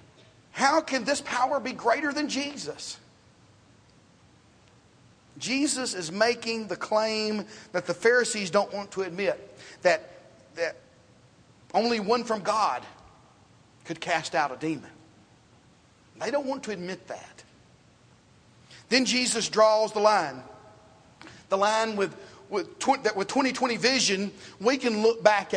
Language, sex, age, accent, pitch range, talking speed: English, male, 40-59, American, 190-245 Hz, 130 wpm